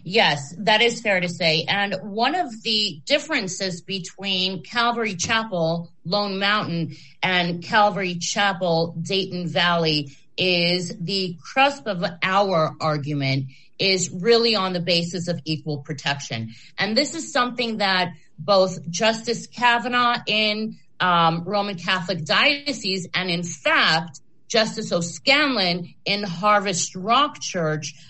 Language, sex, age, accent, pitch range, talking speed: English, female, 30-49, American, 160-205 Hz, 120 wpm